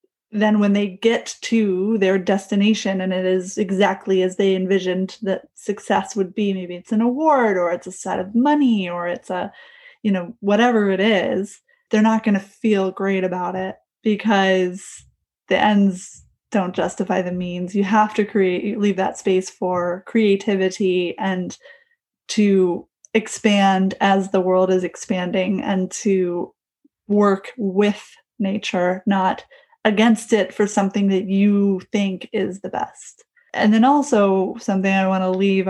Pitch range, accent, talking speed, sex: 190-220 Hz, American, 155 wpm, female